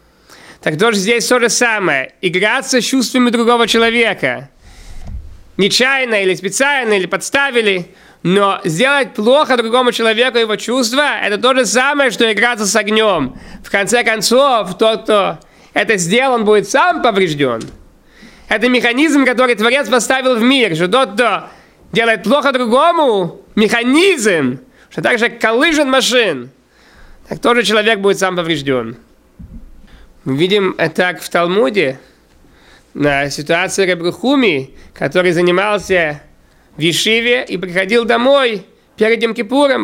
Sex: male